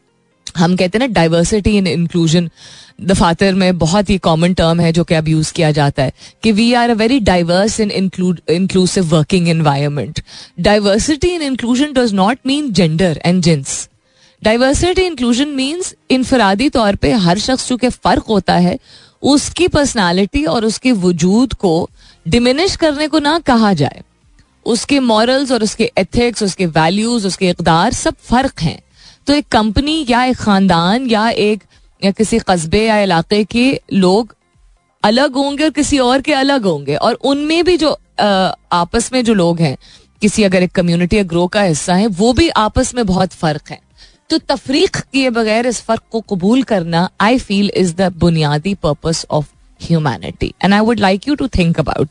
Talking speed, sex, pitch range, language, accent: 165 wpm, female, 170-245 Hz, Hindi, native